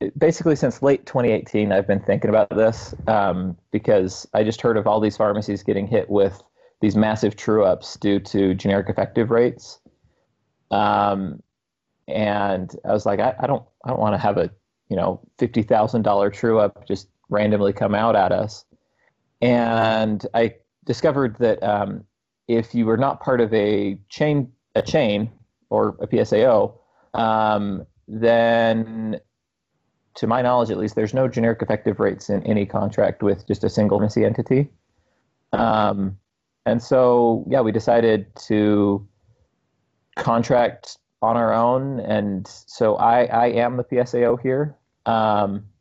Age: 30-49